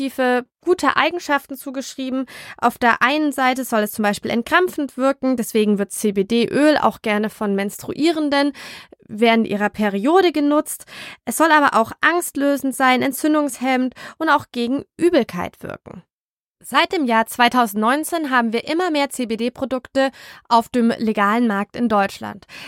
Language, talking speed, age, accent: German, 135 wpm, 20-39, German